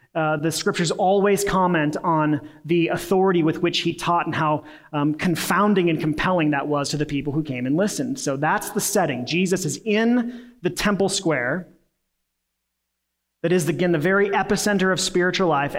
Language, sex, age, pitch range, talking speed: English, male, 30-49, 145-195 Hz, 175 wpm